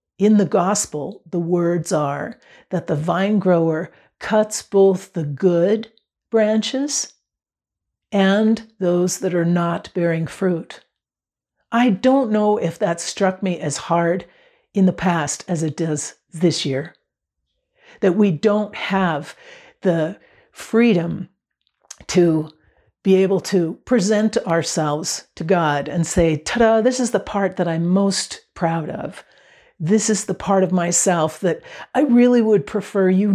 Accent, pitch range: American, 170-225 Hz